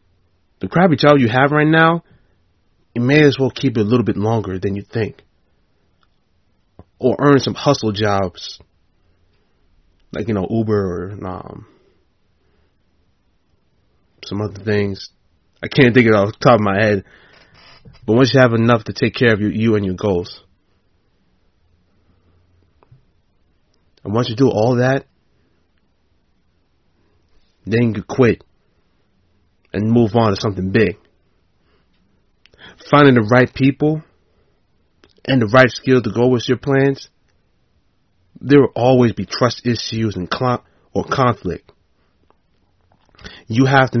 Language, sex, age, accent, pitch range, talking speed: English, male, 30-49, American, 90-125 Hz, 135 wpm